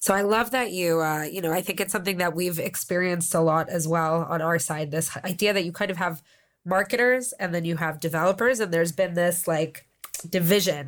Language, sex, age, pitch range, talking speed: English, female, 20-39, 160-190 Hz, 225 wpm